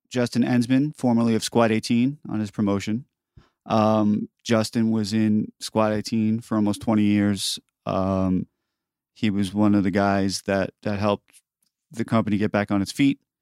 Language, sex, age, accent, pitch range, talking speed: English, male, 30-49, American, 95-115 Hz, 160 wpm